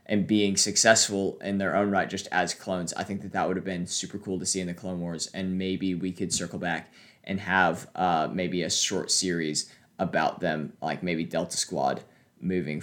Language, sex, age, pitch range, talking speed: English, male, 20-39, 95-110 Hz, 210 wpm